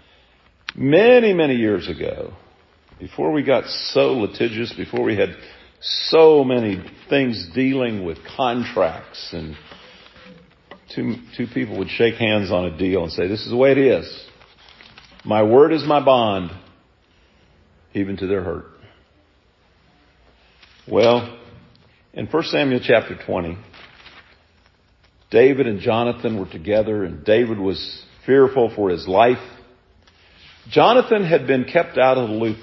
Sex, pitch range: male, 85-125 Hz